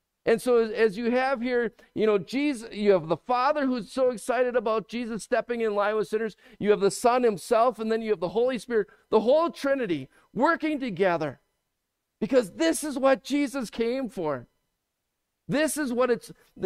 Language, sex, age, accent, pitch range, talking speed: English, male, 50-69, American, 160-245 Hz, 185 wpm